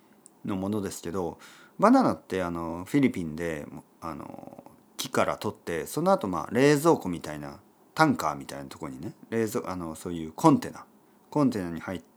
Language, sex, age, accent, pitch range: Japanese, male, 40-59, native, 90-155 Hz